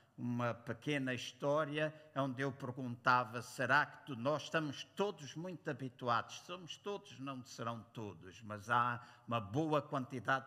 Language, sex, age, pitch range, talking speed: Portuguese, male, 60-79, 115-140 Hz, 140 wpm